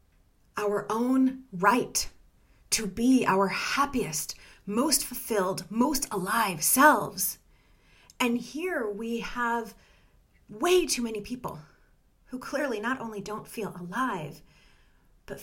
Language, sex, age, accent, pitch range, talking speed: English, female, 30-49, American, 195-255 Hz, 110 wpm